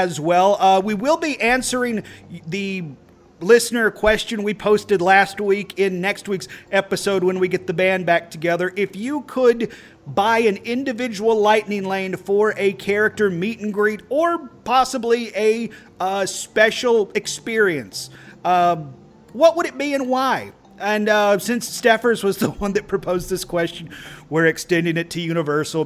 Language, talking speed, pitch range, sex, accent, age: English, 160 wpm, 170-225 Hz, male, American, 40-59